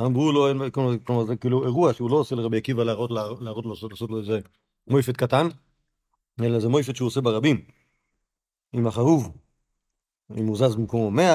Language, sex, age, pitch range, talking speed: Hebrew, male, 40-59, 110-135 Hz, 165 wpm